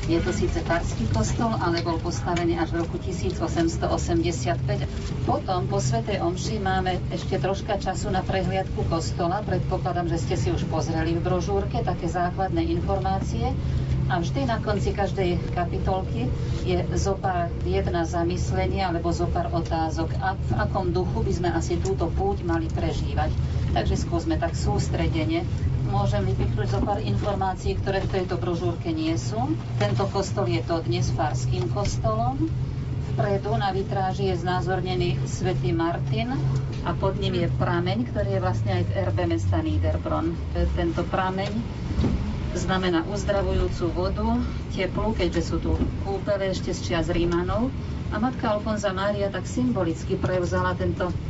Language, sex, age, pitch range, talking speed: Slovak, female, 40-59, 90-135 Hz, 140 wpm